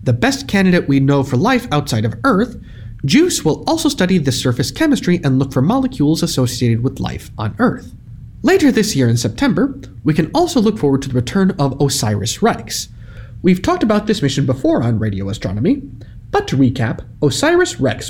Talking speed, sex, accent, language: 180 wpm, male, American, English